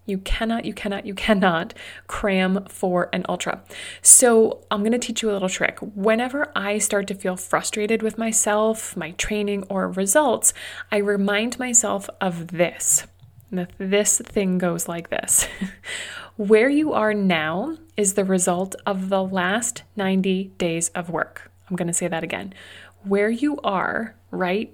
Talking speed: 160 wpm